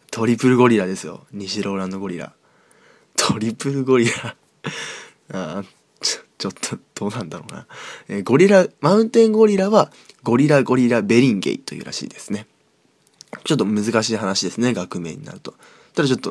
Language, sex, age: Japanese, male, 20-39